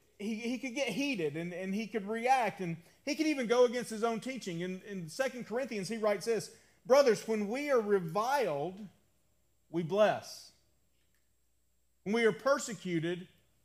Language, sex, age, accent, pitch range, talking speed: English, male, 40-59, American, 145-230 Hz, 165 wpm